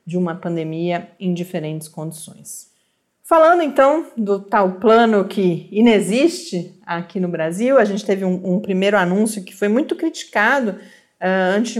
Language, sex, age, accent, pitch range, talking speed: Portuguese, female, 40-59, Brazilian, 180-245 Hz, 140 wpm